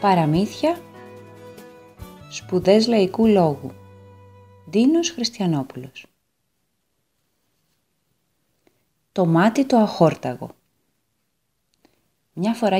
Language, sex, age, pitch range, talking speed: Greek, female, 30-49, 160-240 Hz, 55 wpm